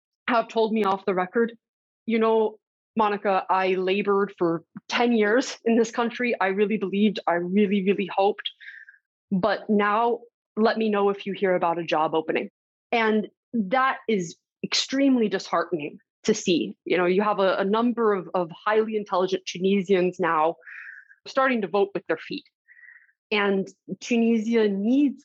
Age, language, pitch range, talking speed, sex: 20-39, English, 190-225 Hz, 155 wpm, female